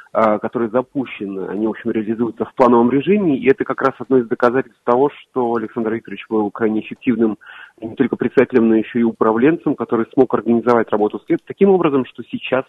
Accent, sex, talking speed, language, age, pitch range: native, male, 190 wpm, Russian, 30-49, 110-135 Hz